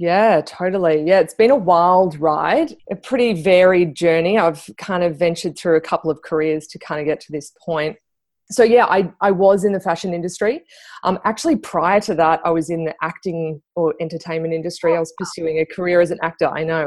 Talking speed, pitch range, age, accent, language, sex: 215 wpm, 160-190 Hz, 20-39, Australian, English, female